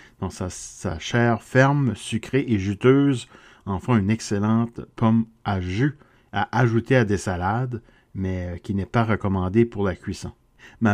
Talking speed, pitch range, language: 160 wpm, 105-130 Hz, French